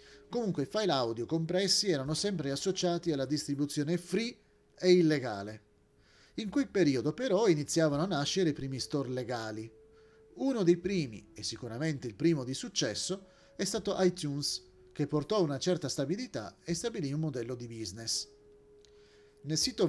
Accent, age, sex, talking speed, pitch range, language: native, 40-59, male, 150 wpm, 135-180 Hz, Italian